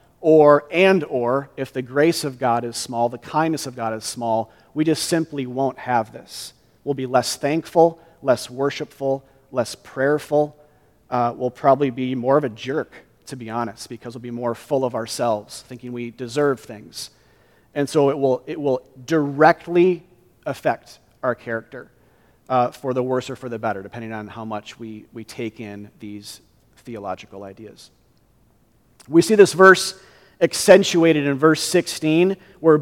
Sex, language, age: male, English, 40-59